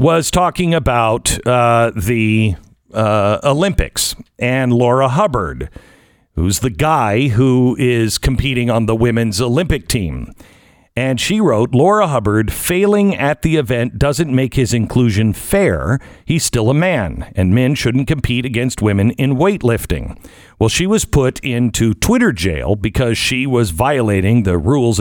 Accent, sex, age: American, male, 50-69